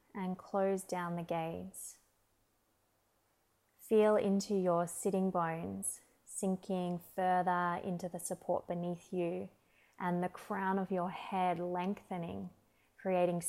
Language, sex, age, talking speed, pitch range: English, female, 20-39, 110 wpm, 165-185 Hz